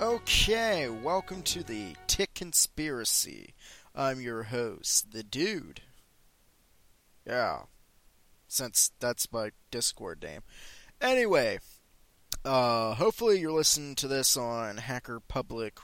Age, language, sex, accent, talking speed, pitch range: 20-39, English, male, American, 100 wpm, 115-180 Hz